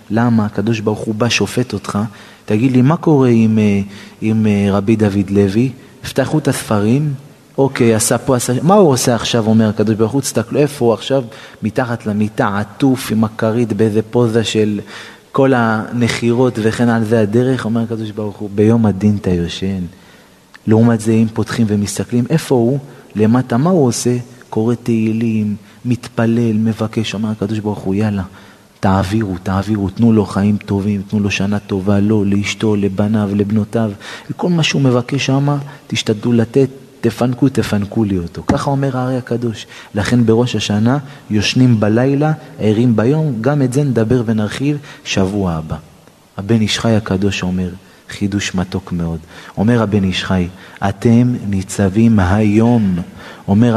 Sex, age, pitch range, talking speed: male, 30-49, 105-120 Hz, 145 wpm